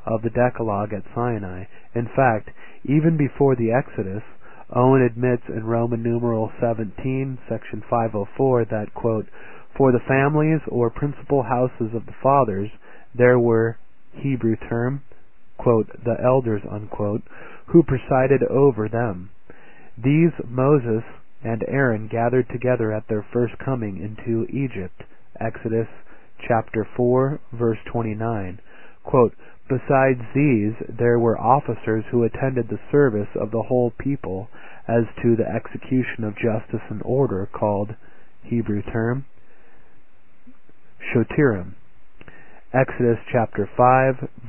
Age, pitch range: 30-49, 110-130 Hz